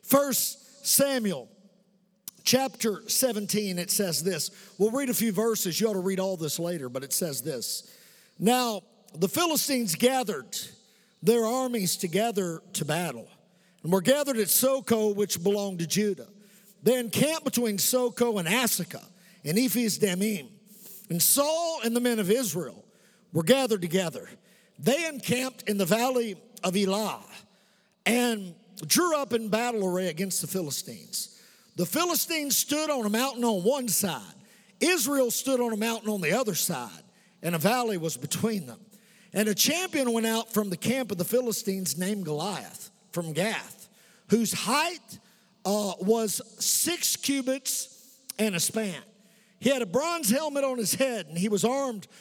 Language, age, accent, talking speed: English, 50-69, American, 155 wpm